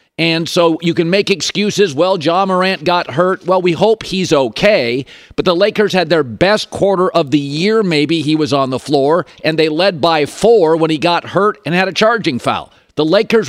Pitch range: 160-210 Hz